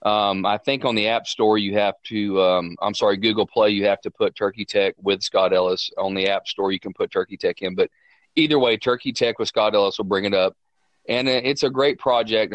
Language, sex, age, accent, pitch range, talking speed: English, male, 30-49, American, 100-120 Hz, 245 wpm